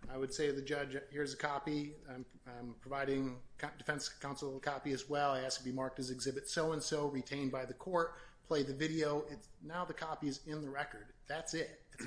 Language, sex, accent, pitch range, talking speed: English, male, American, 130-155 Hz, 225 wpm